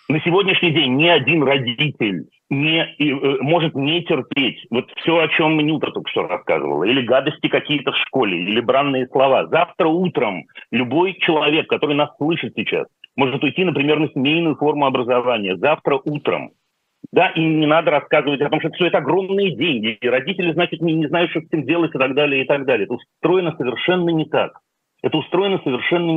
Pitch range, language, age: 130-170 Hz, Russian, 40-59